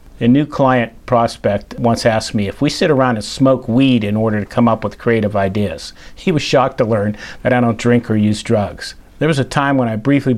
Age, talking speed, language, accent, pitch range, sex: 50-69, 235 wpm, English, American, 105-125 Hz, male